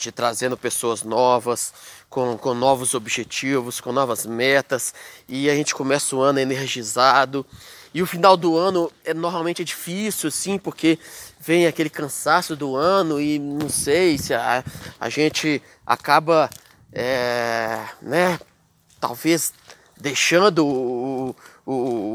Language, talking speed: Portuguese, 130 wpm